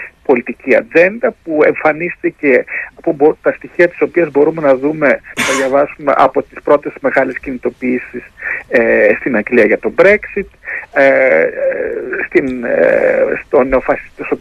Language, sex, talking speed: Greek, male, 105 wpm